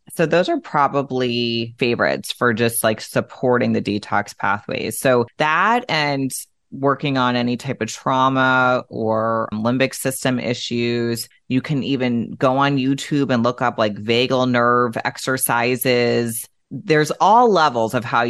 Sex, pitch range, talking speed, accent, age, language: female, 110-130 Hz, 140 wpm, American, 30-49, English